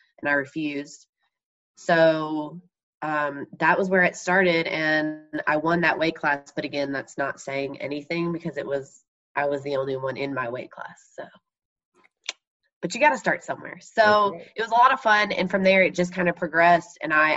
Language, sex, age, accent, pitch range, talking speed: English, female, 20-39, American, 145-170 Hz, 200 wpm